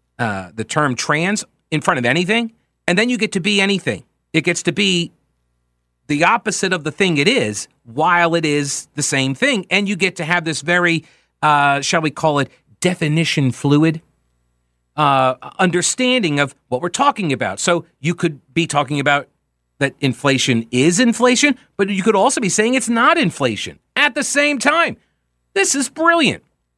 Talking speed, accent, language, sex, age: 175 wpm, American, English, male, 40-59